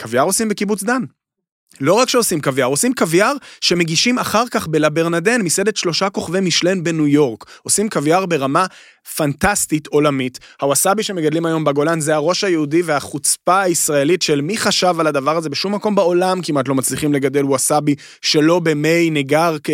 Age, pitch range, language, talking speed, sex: 20-39, 140-195 Hz, Hebrew, 155 wpm, male